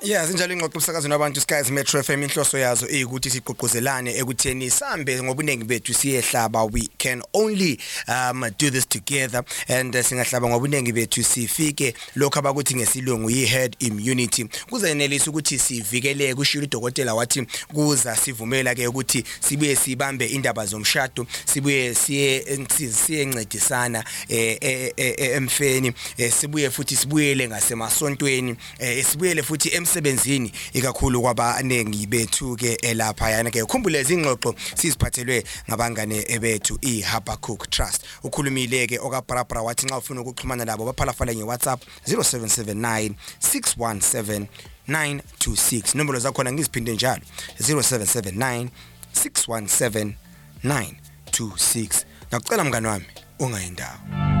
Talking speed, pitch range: 50 wpm, 115-140 Hz